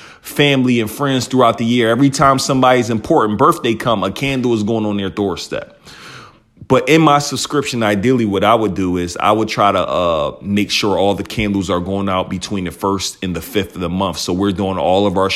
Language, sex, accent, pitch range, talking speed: English, male, American, 95-115 Hz, 225 wpm